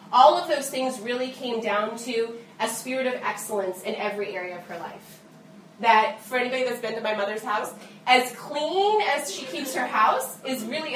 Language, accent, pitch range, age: English, American, 200-255 Hz, 30-49